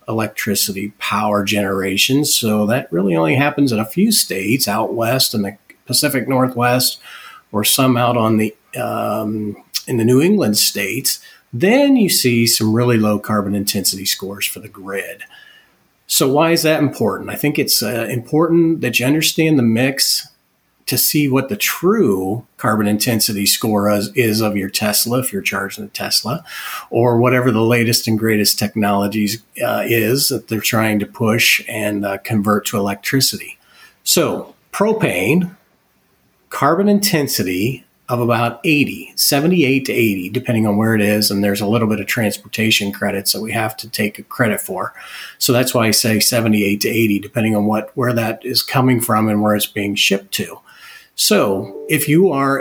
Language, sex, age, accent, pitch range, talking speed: English, male, 40-59, American, 105-135 Hz, 170 wpm